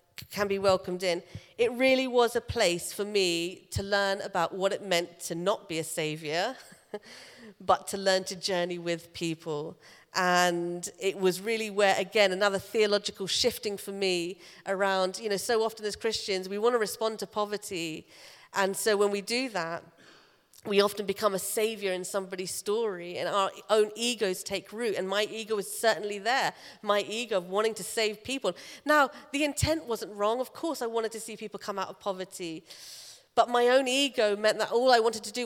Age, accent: 40-59, British